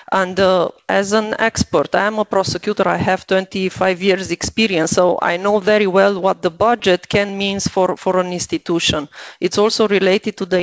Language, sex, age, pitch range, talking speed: Slovak, female, 40-59, 185-220 Hz, 185 wpm